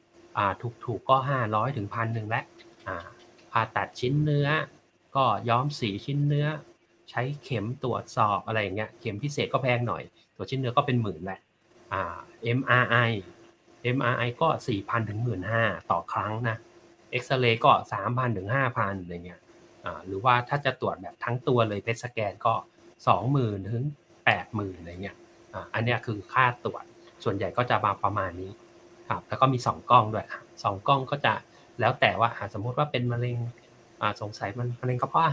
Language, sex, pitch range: Thai, male, 105-130 Hz